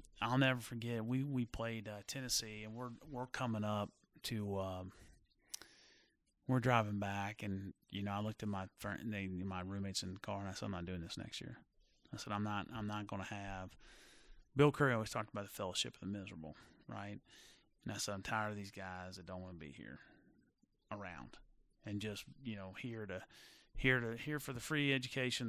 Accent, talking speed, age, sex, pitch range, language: American, 205 wpm, 30-49, male, 100-120 Hz, English